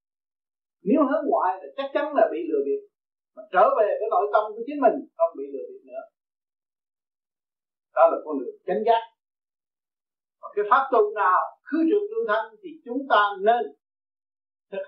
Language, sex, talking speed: Vietnamese, male, 180 wpm